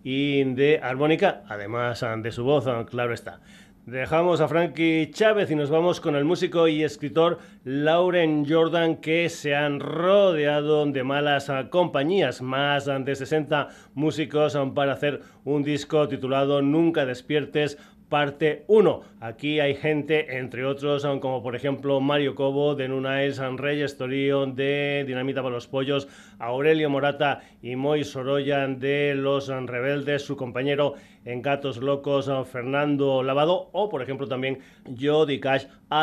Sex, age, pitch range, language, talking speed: male, 30-49, 135-155 Hz, Spanish, 145 wpm